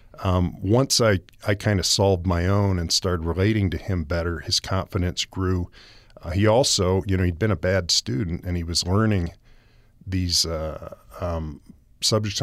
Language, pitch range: English, 90-110 Hz